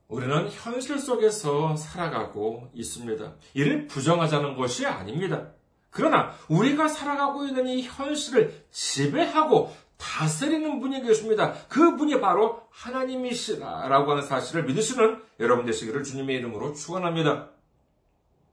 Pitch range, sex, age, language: 145-240 Hz, male, 40-59, Korean